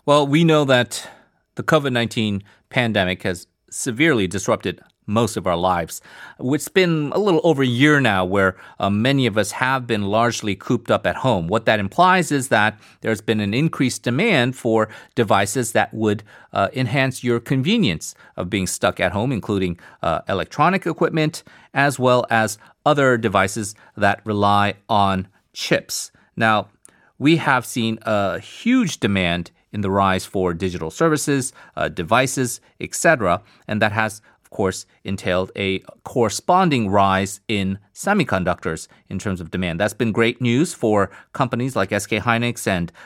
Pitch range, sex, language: 100-135 Hz, male, Korean